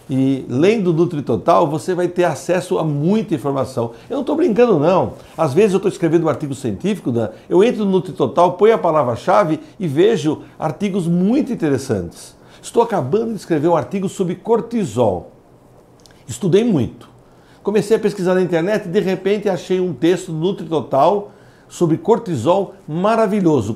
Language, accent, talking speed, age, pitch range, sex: Portuguese, Brazilian, 155 wpm, 60-79, 140-195 Hz, male